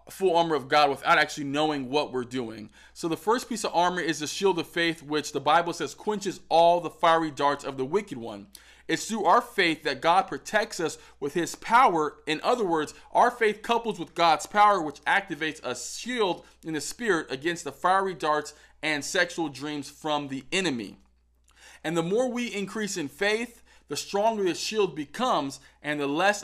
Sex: male